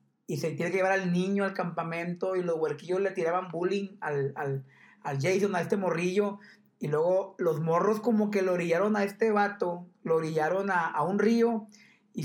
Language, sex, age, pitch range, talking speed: Spanish, male, 50-69, 160-205 Hz, 190 wpm